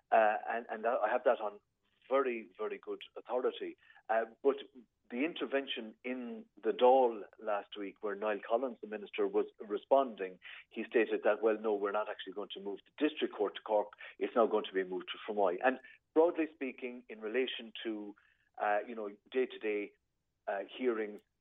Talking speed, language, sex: 175 wpm, English, male